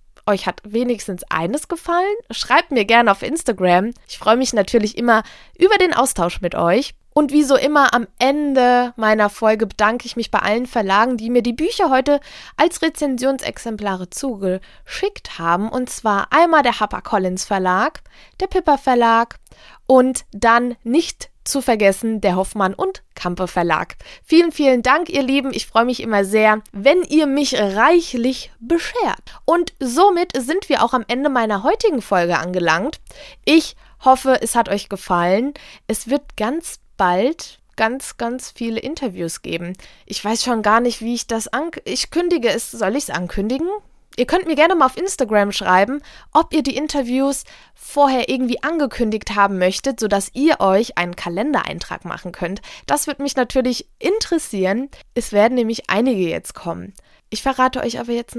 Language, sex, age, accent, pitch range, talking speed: German, female, 20-39, German, 210-285 Hz, 160 wpm